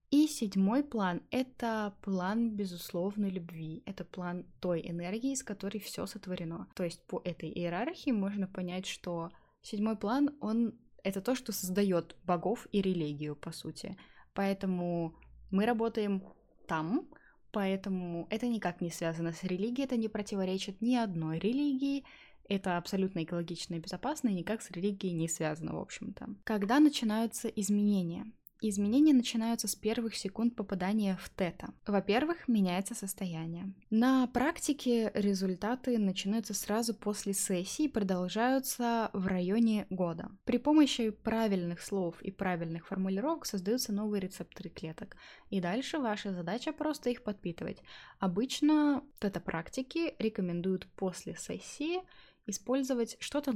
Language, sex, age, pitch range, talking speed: Russian, female, 20-39, 185-235 Hz, 130 wpm